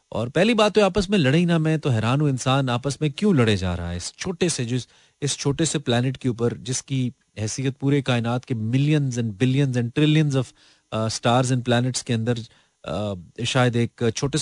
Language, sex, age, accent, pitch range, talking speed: Hindi, male, 30-49, native, 110-145 Hz, 205 wpm